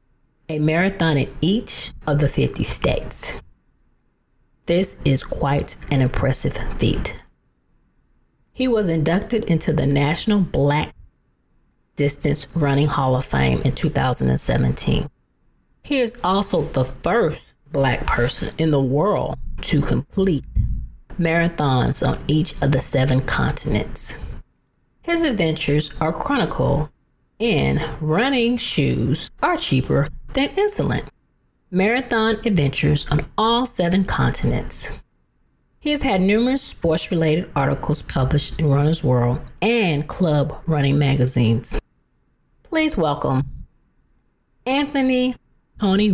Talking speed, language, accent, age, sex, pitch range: 110 wpm, English, American, 40-59, female, 140-205 Hz